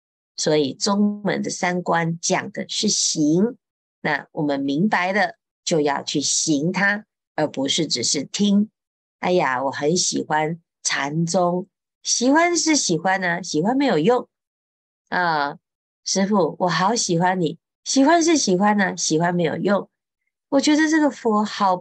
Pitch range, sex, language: 165-240 Hz, female, Chinese